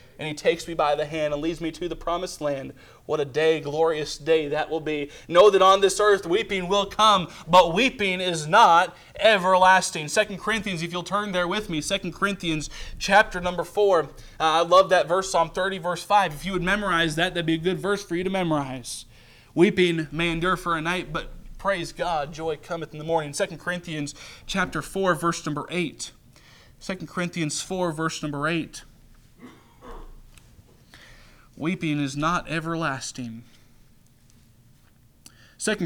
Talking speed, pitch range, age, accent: 170 wpm, 155-195 Hz, 20-39, American